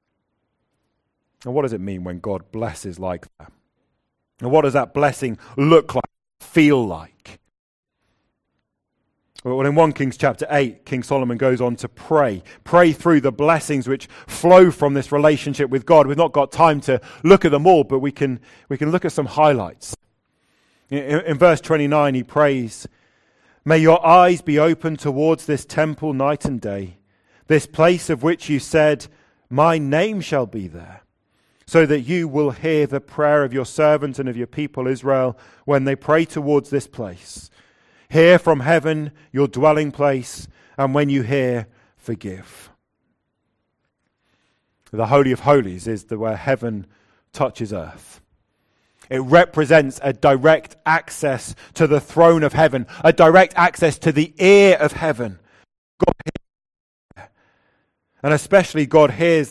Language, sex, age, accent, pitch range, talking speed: English, male, 40-59, British, 120-155 Hz, 155 wpm